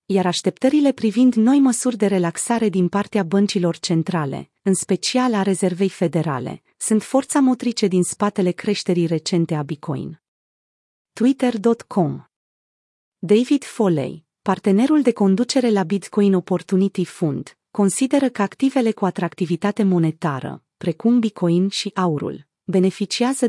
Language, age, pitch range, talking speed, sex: Romanian, 30-49, 175-230 Hz, 120 wpm, female